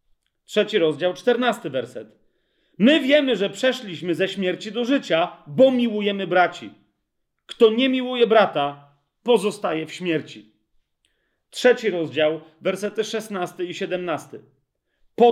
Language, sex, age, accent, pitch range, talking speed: Polish, male, 40-59, native, 165-225 Hz, 115 wpm